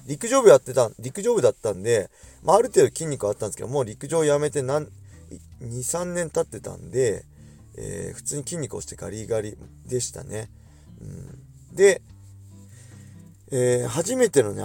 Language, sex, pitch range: Japanese, male, 100-145 Hz